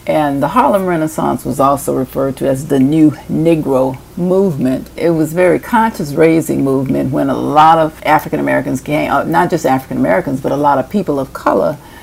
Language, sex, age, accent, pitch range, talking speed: English, female, 50-69, American, 135-170 Hz, 180 wpm